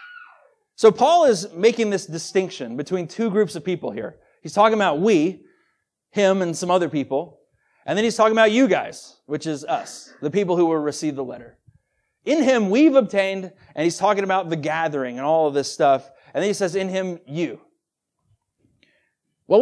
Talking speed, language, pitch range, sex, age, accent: 185 wpm, English, 160-220 Hz, male, 30-49, American